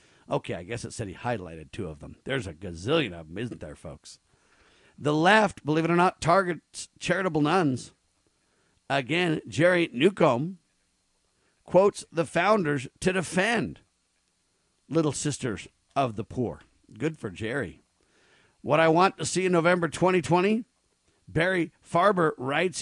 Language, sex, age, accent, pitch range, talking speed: English, male, 50-69, American, 120-170 Hz, 140 wpm